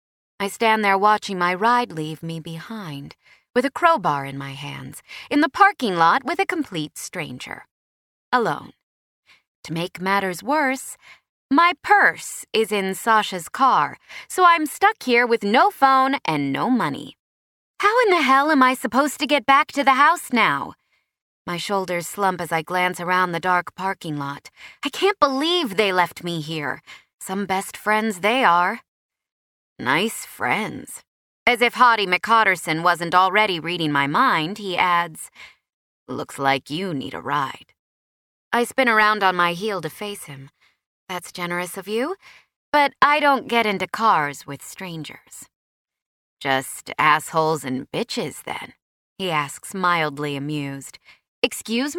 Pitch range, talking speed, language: 160-250 Hz, 150 wpm, English